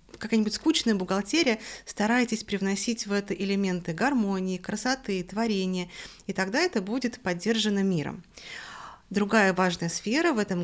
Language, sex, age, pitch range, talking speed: Russian, female, 20-39, 180-230 Hz, 125 wpm